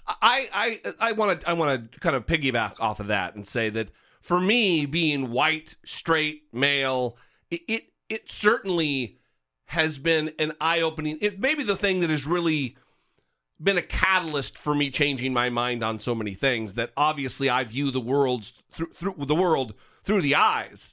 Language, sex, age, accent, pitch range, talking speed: English, male, 40-59, American, 130-175 Hz, 185 wpm